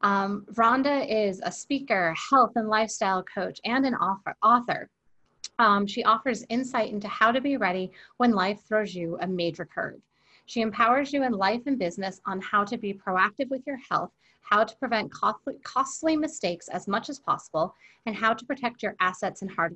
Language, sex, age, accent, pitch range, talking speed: English, female, 30-49, American, 185-235 Hz, 190 wpm